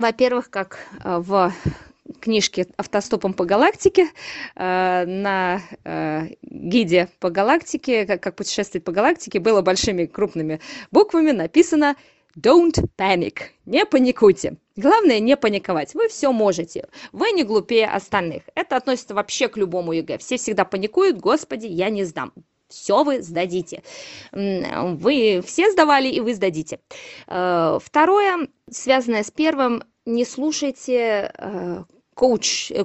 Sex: female